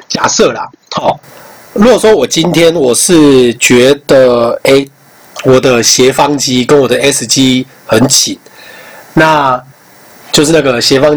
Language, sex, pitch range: Chinese, male, 125-165 Hz